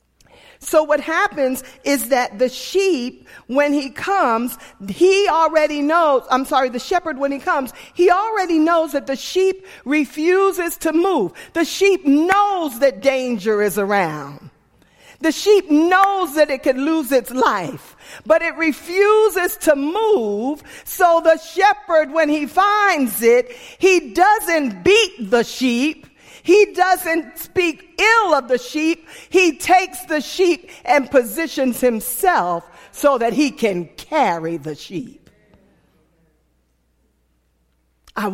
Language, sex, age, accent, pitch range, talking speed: English, female, 40-59, American, 245-360 Hz, 130 wpm